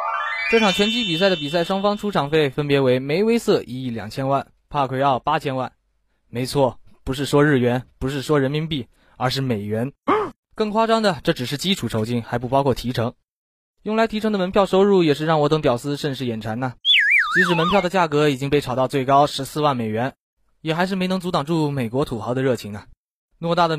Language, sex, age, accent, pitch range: Chinese, male, 20-39, native, 125-175 Hz